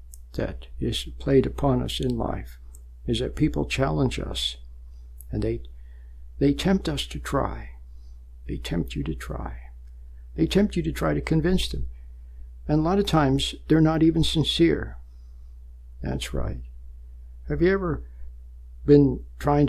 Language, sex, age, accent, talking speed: English, male, 60-79, American, 145 wpm